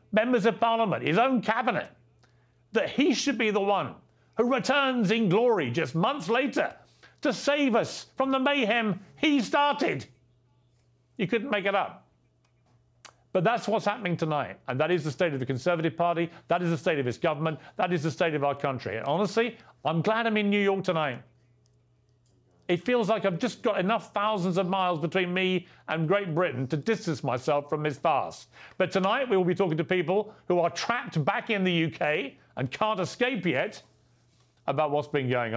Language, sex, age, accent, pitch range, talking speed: English, male, 50-69, British, 130-205 Hz, 190 wpm